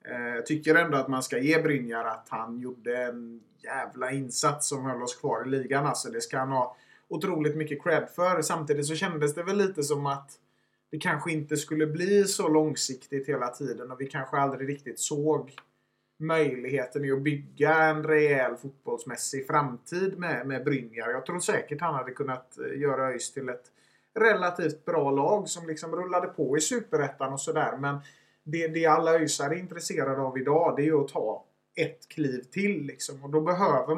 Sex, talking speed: male, 180 wpm